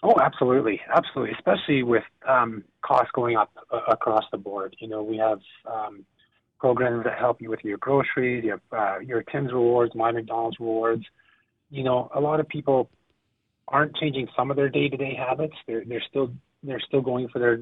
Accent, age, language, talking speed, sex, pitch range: American, 30-49, English, 195 wpm, male, 110-125 Hz